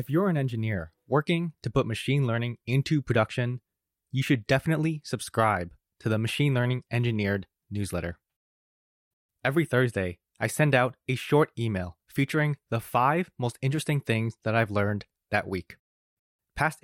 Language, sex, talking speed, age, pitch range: English, male, 145 wpm, 20-39, 105-140 Hz